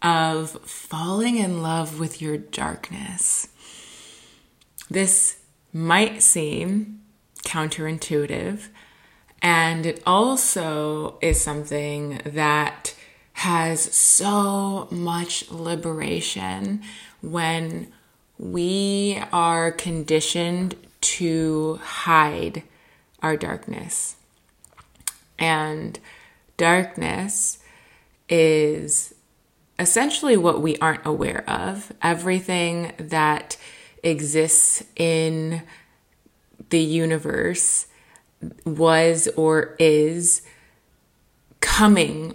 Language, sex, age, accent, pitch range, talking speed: English, female, 20-39, American, 155-175 Hz, 70 wpm